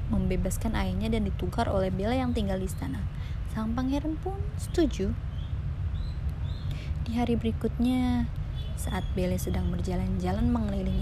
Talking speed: 120 wpm